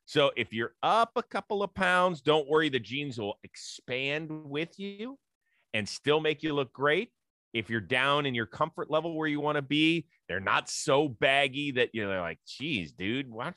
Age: 30-49